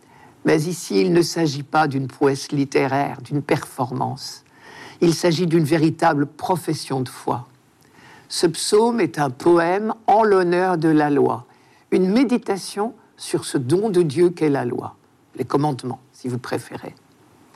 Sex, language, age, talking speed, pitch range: male, French, 60-79, 145 wpm, 145-185 Hz